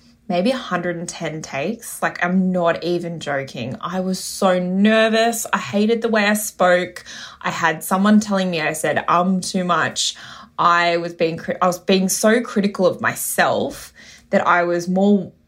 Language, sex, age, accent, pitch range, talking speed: English, female, 20-39, Australian, 170-210 Hz, 165 wpm